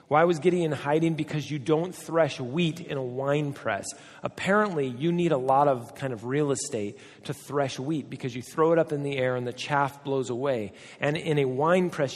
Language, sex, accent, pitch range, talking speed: English, male, American, 125-155 Hz, 215 wpm